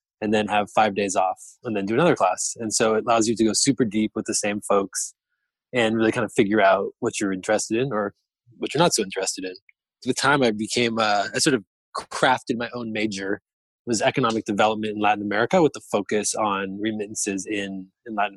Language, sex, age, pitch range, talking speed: English, male, 20-39, 105-120 Hz, 225 wpm